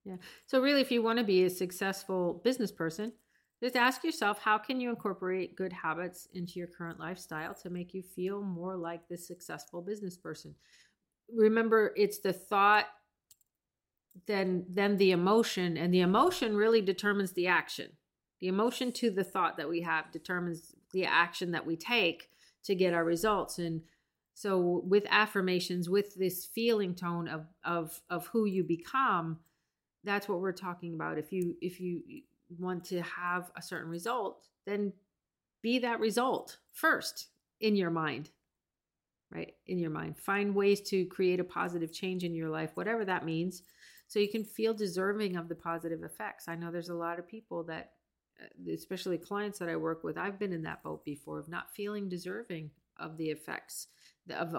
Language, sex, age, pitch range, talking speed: English, female, 40-59, 170-205 Hz, 175 wpm